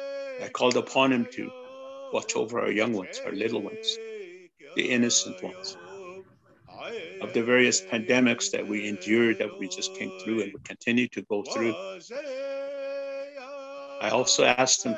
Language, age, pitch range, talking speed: English, 50-69, 185-280 Hz, 150 wpm